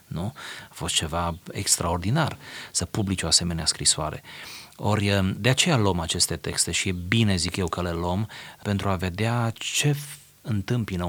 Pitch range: 85-115 Hz